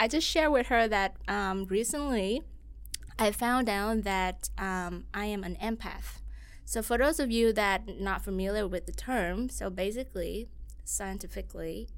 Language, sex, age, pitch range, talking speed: English, female, 20-39, 185-220 Hz, 155 wpm